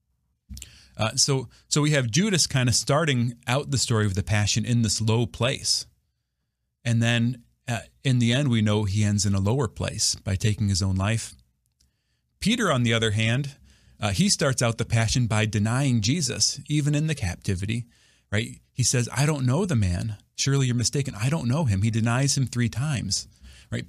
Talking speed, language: 195 wpm, English